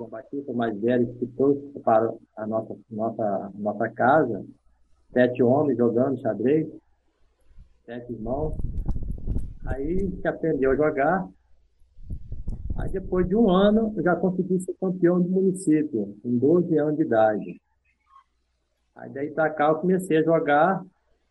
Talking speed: 135 wpm